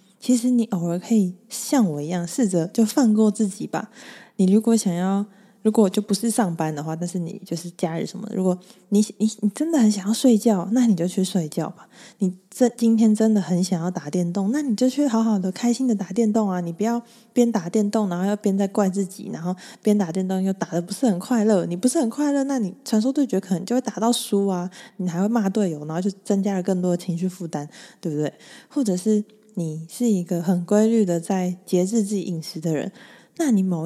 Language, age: Chinese, 20-39